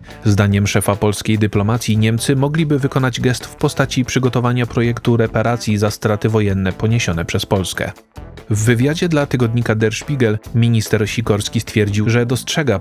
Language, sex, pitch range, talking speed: Polish, male, 105-125 Hz, 140 wpm